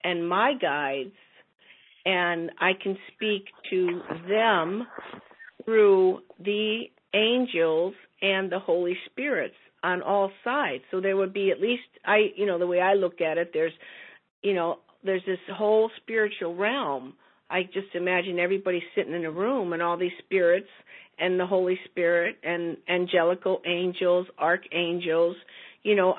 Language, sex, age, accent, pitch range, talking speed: English, female, 50-69, American, 175-215 Hz, 145 wpm